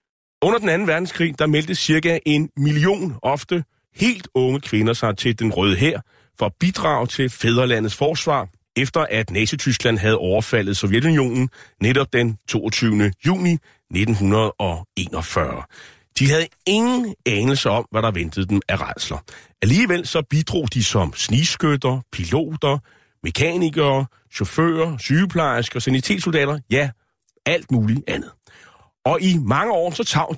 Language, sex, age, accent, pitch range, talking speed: Danish, male, 30-49, native, 115-155 Hz, 130 wpm